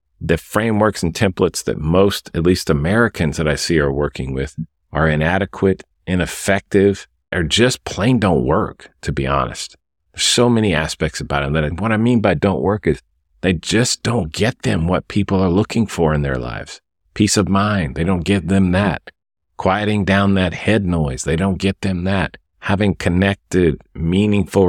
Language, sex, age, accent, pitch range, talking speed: English, male, 50-69, American, 80-100 Hz, 180 wpm